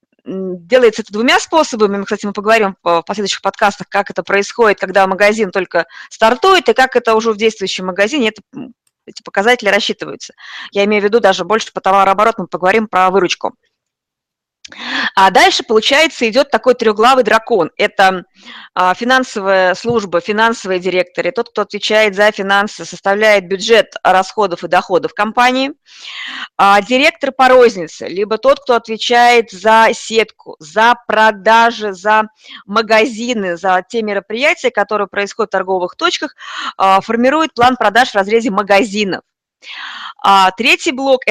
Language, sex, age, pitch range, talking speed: Russian, female, 20-39, 195-240 Hz, 140 wpm